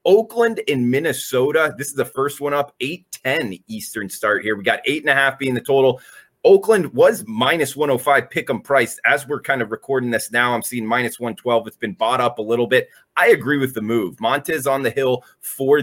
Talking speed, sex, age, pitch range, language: 200 wpm, male, 30-49, 120-150 Hz, English